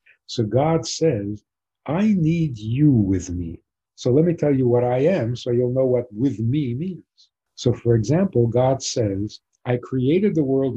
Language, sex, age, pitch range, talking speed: English, male, 60-79, 115-160 Hz, 180 wpm